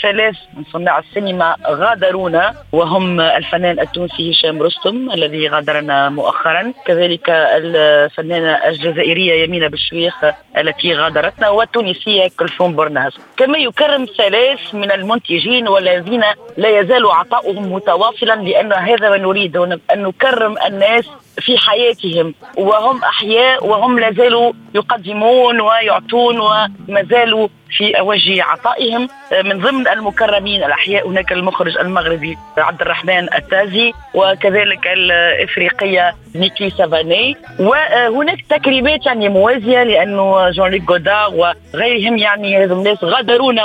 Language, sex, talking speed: Arabic, female, 105 wpm